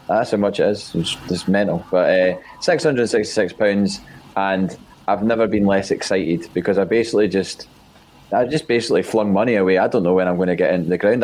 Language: English